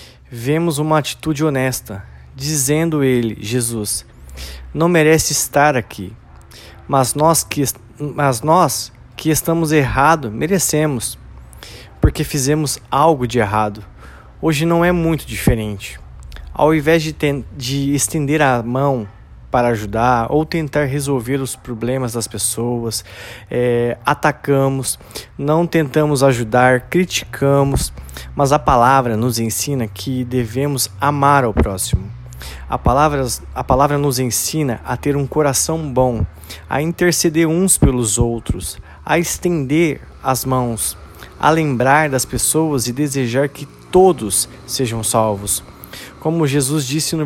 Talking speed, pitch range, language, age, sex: 120 wpm, 115-150 Hz, Portuguese, 20-39, male